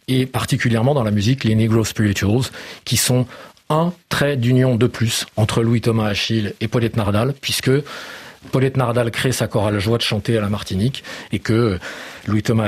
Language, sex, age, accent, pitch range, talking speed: French, male, 40-59, French, 110-130 Hz, 170 wpm